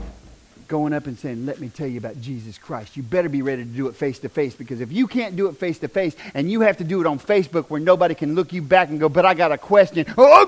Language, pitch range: English, 210-325 Hz